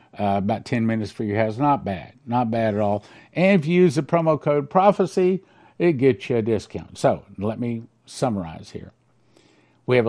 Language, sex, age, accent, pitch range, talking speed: English, male, 50-69, American, 110-150 Hz, 195 wpm